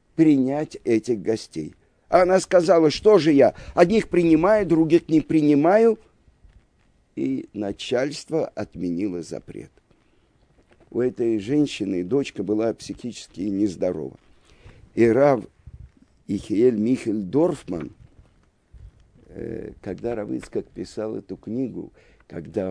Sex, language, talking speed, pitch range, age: male, Russian, 90 wpm, 100-150 Hz, 50-69